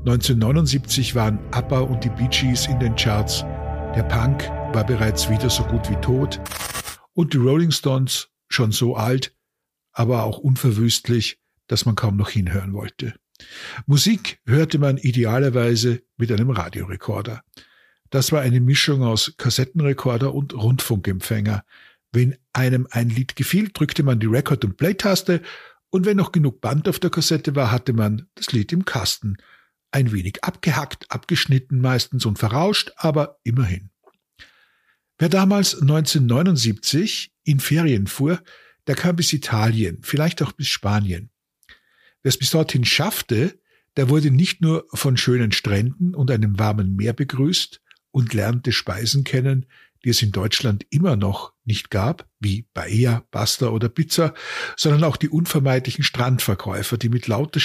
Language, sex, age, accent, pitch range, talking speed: German, male, 50-69, German, 110-145 Hz, 145 wpm